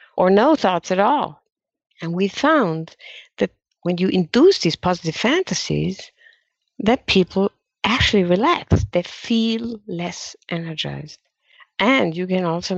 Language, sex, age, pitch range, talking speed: English, female, 50-69, 160-215 Hz, 125 wpm